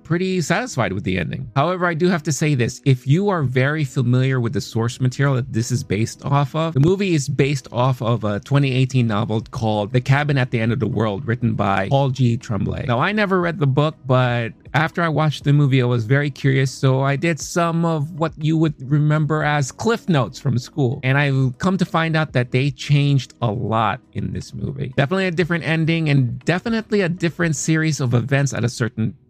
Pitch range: 120-155 Hz